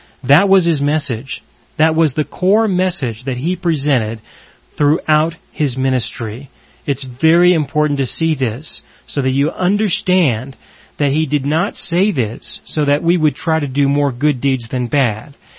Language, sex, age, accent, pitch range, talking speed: English, male, 30-49, American, 130-175 Hz, 165 wpm